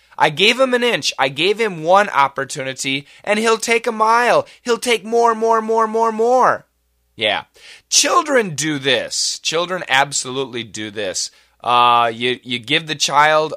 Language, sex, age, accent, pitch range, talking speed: English, male, 20-39, American, 130-185 Hz, 160 wpm